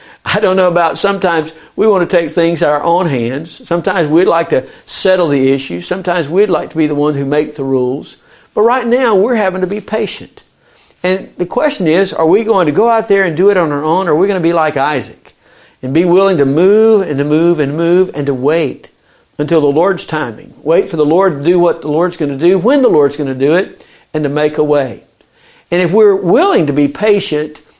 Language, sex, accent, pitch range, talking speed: English, male, American, 145-185 Hz, 245 wpm